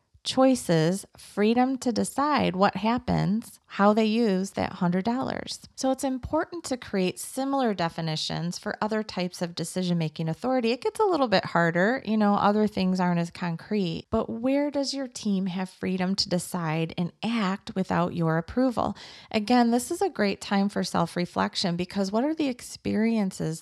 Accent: American